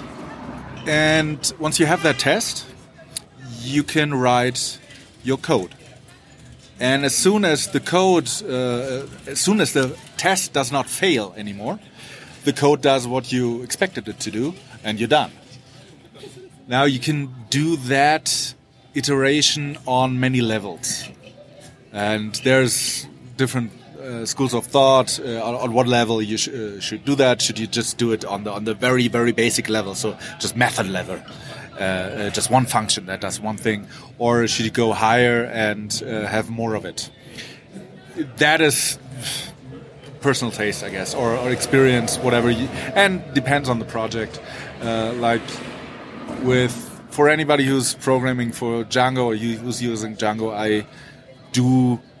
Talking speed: 150 wpm